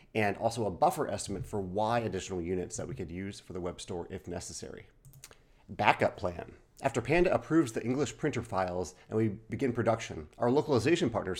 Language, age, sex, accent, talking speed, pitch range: English, 40-59, male, American, 185 wpm, 95-125 Hz